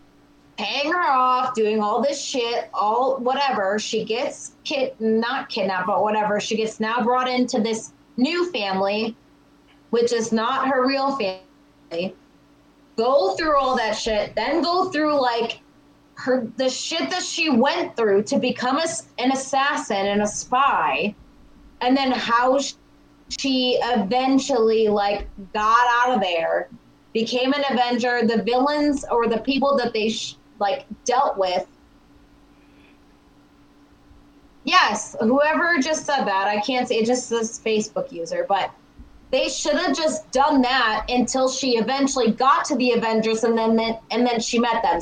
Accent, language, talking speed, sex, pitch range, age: American, English, 145 wpm, female, 225-280 Hz, 30-49